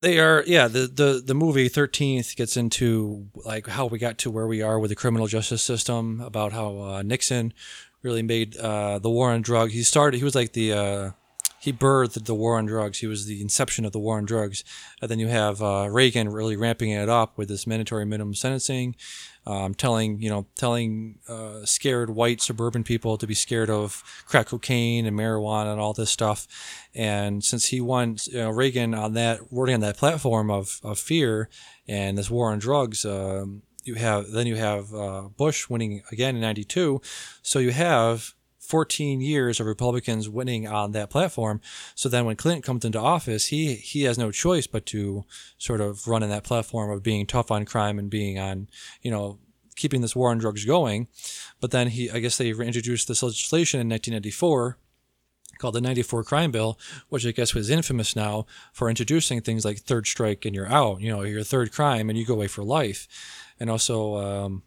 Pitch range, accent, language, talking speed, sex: 105-125 Hz, American, English, 200 wpm, male